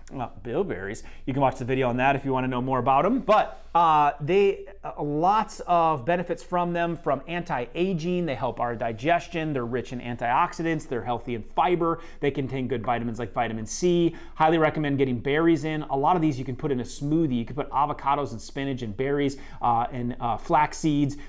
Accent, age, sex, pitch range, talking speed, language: American, 30-49, male, 130-170 Hz, 205 wpm, English